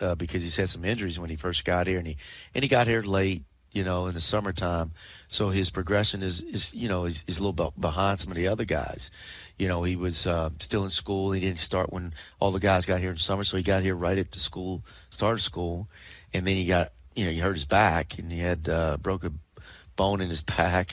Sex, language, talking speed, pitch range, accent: male, English, 255 wpm, 85-100 Hz, American